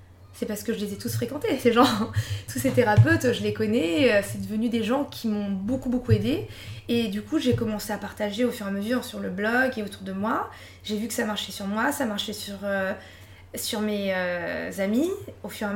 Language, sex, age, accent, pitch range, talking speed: French, female, 20-39, French, 205-255 Hz, 240 wpm